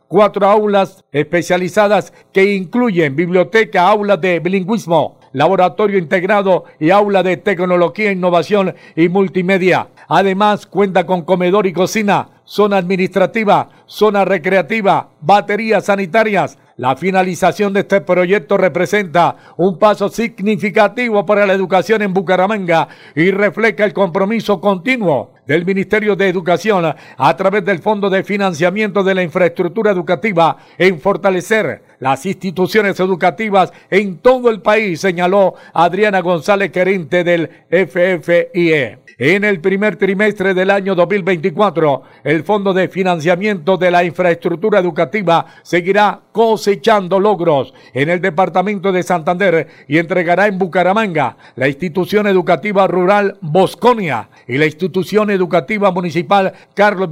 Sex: male